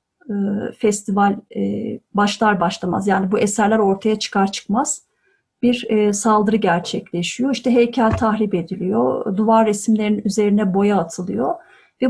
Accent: native